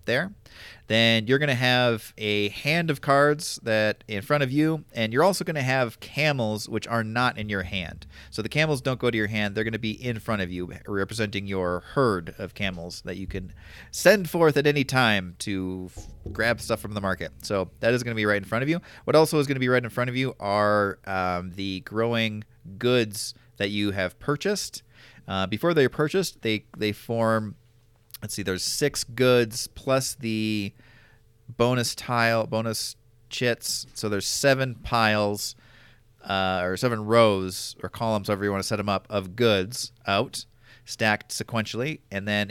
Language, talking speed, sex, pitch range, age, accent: English, 195 wpm, male, 105-125 Hz, 30-49, American